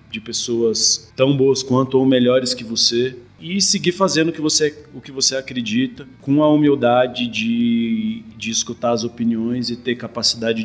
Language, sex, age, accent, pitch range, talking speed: Portuguese, male, 20-39, Brazilian, 110-125 Hz, 160 wpm